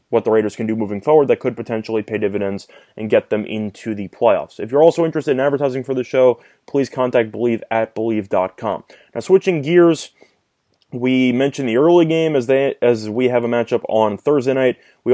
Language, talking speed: English, 200 wpm